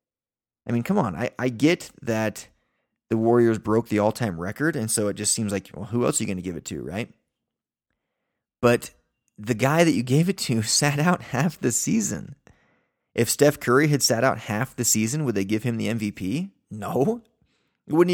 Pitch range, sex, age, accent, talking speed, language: 105-140 Hz, male, 30-49, American, 205 wpm, English